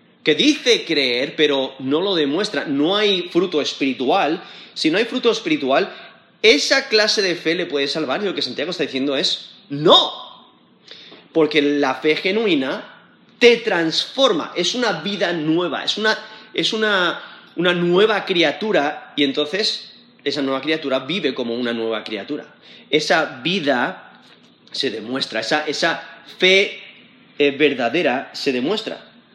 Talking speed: 135 wpm